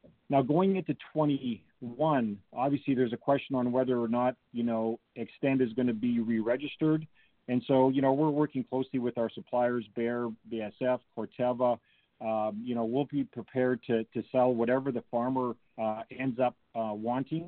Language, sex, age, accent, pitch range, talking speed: English, male, 40-59, American, 115-130 Hz, 170 wpm